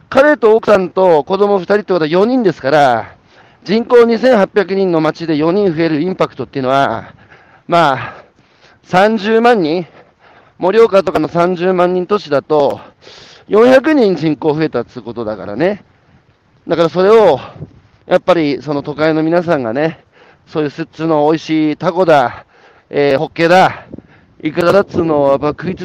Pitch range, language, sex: 140-190 Hz, Japanese, male